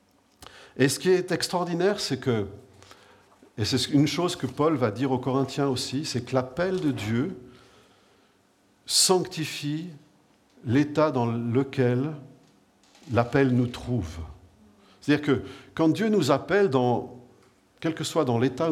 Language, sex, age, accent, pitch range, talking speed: French, male, 50-69, French, 125-180 Hz, 130 wpm